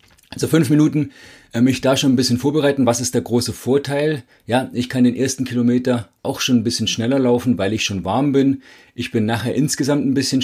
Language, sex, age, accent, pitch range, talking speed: German, male, 40-59, German, 115-140 Hz, 215 wpm